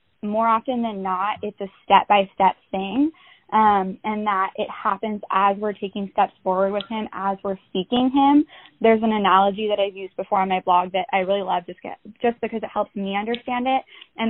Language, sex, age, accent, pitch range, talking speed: English, female, 10-29, American, 195-225 Hz, 205 wpm